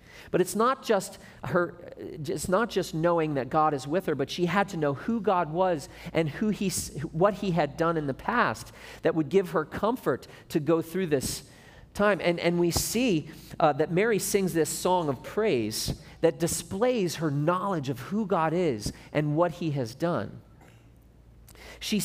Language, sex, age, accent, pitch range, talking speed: English, male, 40-59, American, 140-185 Hz, 185 wpm